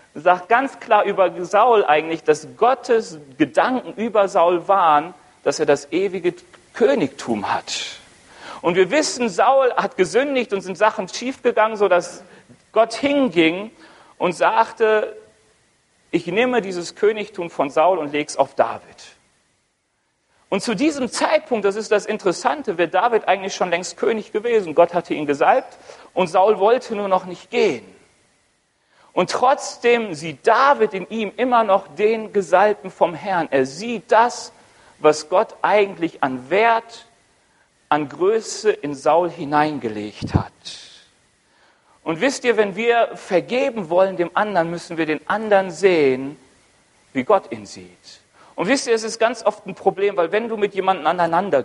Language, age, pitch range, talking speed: German, 40-59, 165-235 Hz, 150 wpm